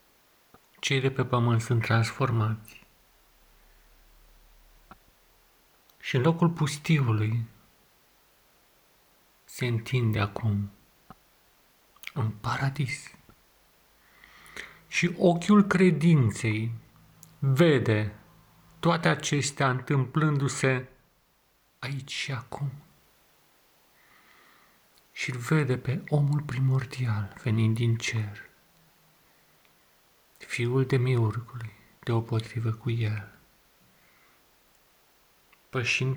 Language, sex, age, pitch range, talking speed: Romanian, male, 50-69, 115-140 Hz, 70 wpm